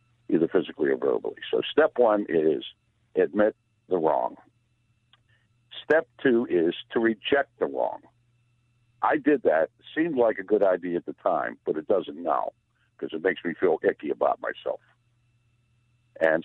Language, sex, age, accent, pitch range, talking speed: English, male, 60-79, American, 115-120 Hz, 155 wpm